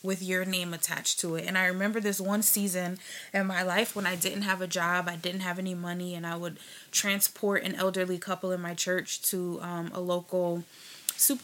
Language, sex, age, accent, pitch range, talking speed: English, female, 20-39, American, 175-205 Hz, 215 wpm